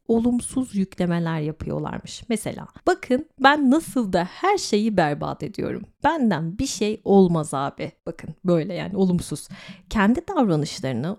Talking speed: 125 wpm